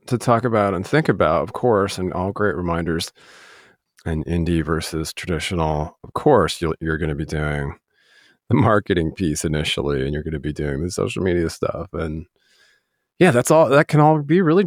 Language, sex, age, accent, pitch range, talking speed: English, male, 30-49, American, 85-120 Hz, 190 wpm